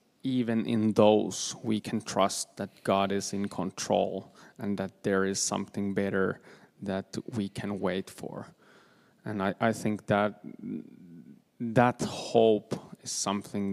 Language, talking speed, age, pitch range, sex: Finnish, 135 wpm, 20-39, 100-110 Hz, male